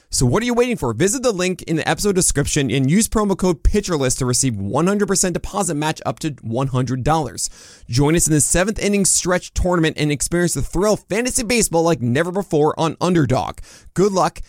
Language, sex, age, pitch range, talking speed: English, male, 20-39, 125-175 Hz, 200 wpm